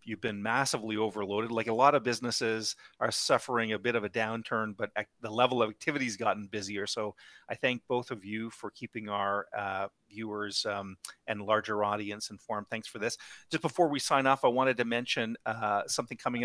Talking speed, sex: 200 wpm, male